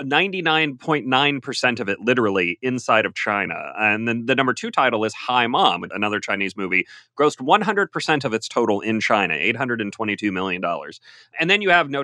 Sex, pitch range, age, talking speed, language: male, 110-155 Hz, 30-49, 160 wpm, English